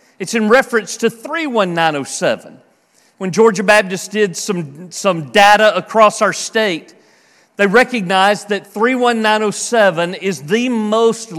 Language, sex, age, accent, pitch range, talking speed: English, male, 40-59, American, 185-240 Hz, 115 wpm